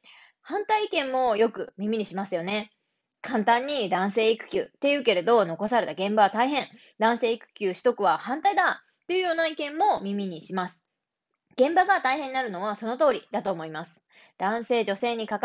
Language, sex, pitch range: Japanese, female, 200-275 Hz